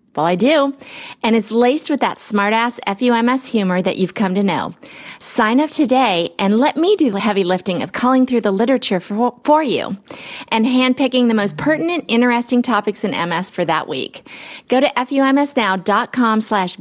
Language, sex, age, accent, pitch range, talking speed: English, female, 40-59, American, 205-265 Hz, 180 wpm